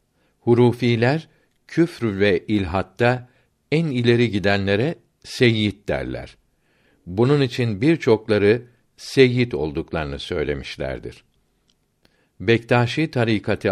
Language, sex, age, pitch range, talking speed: Turkish, male, 60-79, 100-125 Hz, 75 wpm